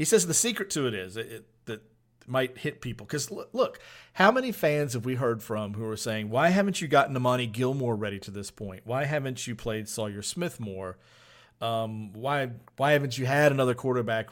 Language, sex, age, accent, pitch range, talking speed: English, male, 40-59, American, 115-135 Hz, 210 wpm